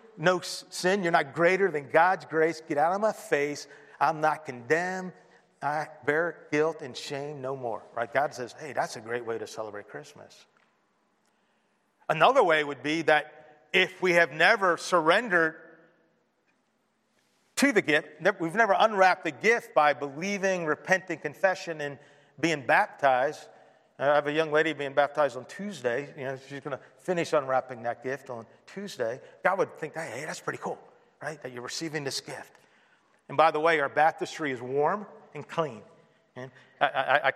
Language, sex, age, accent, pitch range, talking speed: English, male, 40-59, American, 140-185 Hz, 165 wpm